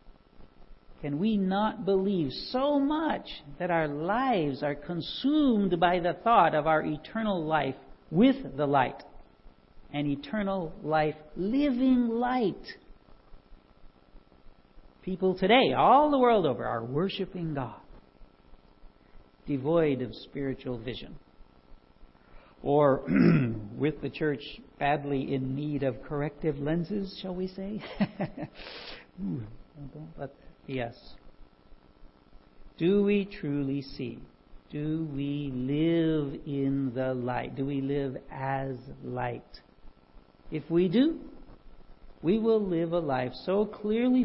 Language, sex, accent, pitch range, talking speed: English, male, American, 130-190 Hz, 105 wpm